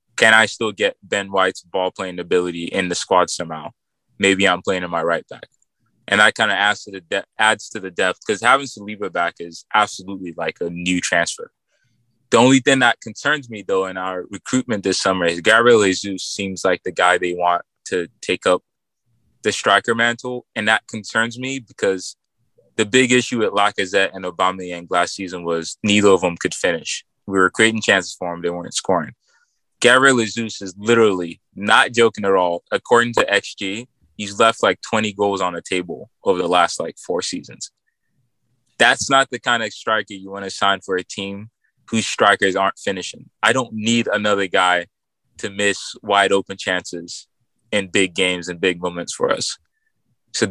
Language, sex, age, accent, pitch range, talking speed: English, male, 20-39, American, 95-115 Hz, 185 wpm